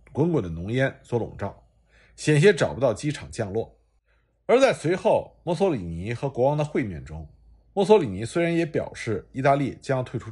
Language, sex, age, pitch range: Chinese, male, 50-69, 110-180 Hz